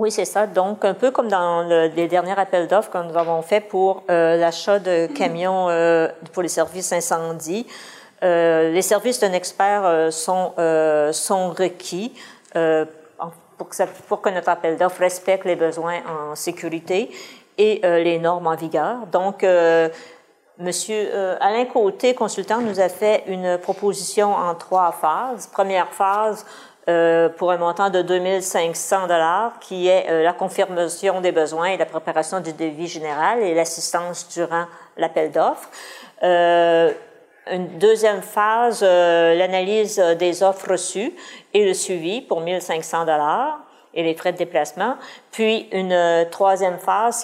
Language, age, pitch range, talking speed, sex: French, 50-69, 170-195 Hz, 155 wpm, female